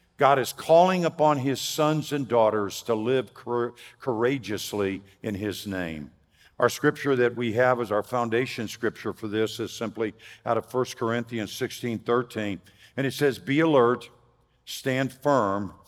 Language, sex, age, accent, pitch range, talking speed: English, male, 50-69, American, 105-130 Hz, 155 wpm